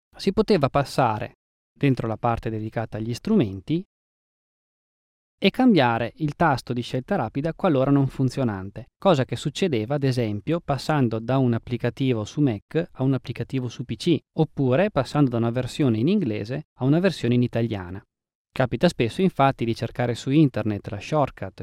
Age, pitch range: 20-39, 115-160 Hz